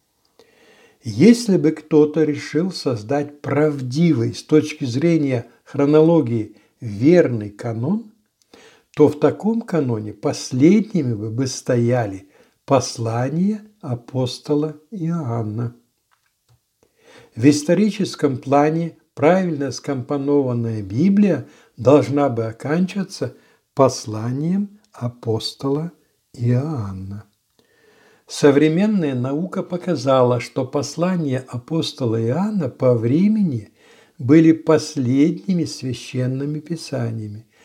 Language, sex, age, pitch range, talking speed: Russian, male, 60-79, 125-170 Hz, 75 wpm